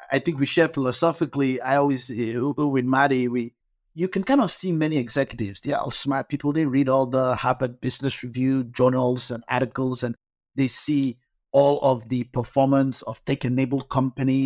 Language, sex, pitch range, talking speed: English, male, 130-185 Hz, 170 wpm